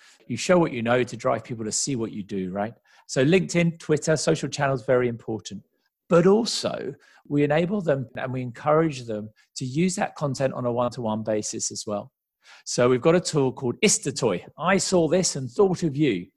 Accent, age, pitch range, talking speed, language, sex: British, 40-59, 115-155 Hz, 200 wpm, English, male